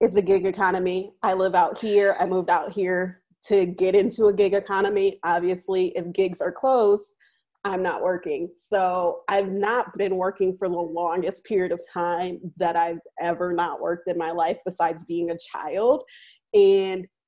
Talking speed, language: 175 wpm, English